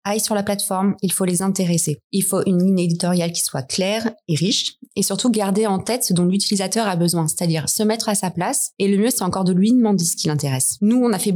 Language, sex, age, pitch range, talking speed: French, female, 20-39, 175-210 Hz, 260 wpm